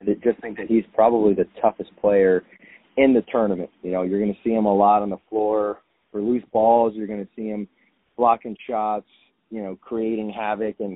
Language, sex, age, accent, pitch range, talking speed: English, male, 30-49, American, 105-125 Hz, 215 wpm